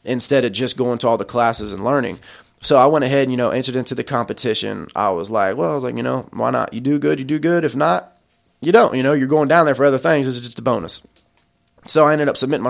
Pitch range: 130-170 Hz